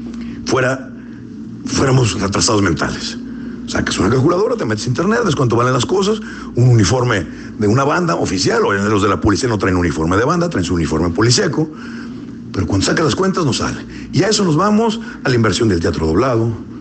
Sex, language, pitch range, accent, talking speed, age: male, Spanish, 110-170 Hz, Mexican, 195 wpm, 50-69